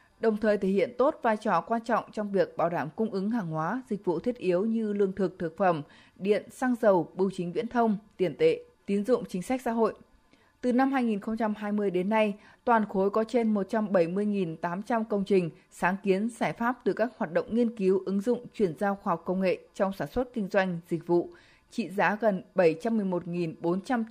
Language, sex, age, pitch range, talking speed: Vietnamese, female, 20-39, 180-225 Hz, 205 wpm